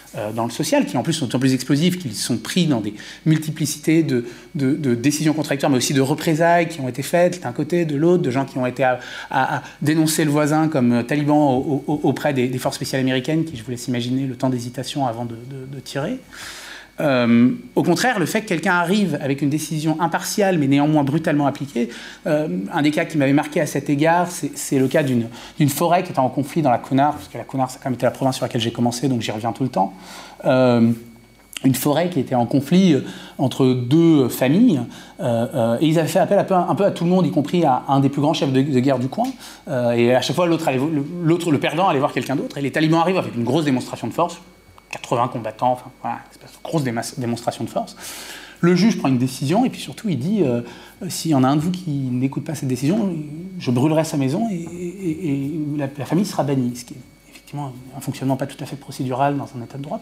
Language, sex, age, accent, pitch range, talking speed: French, male, 30-49, French, 130-165 Hz, 240 wpm